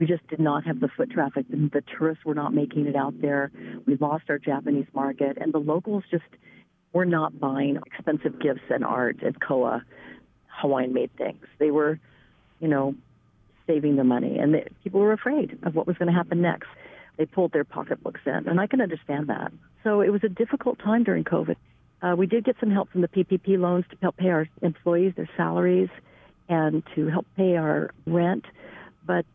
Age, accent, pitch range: 50-69, American, 150-205 Hz